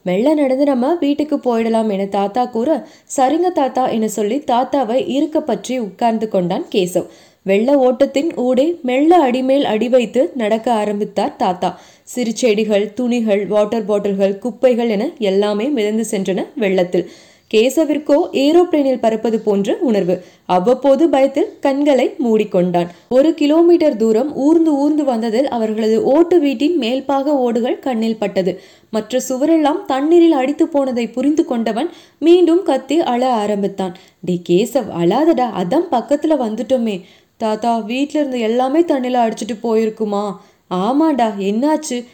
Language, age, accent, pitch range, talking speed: Tamil, 20-39, native, 210-285 Hz, 120 wpm